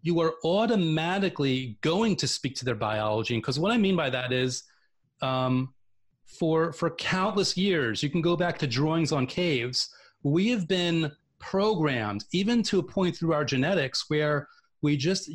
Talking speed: 170 wpm